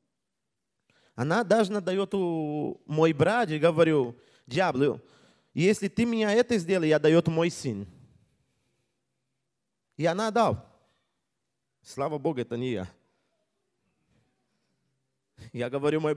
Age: 20-39